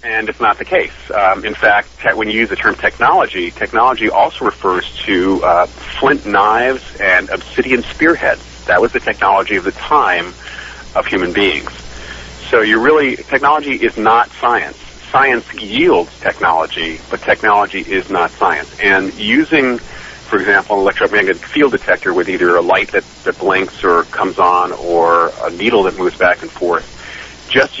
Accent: American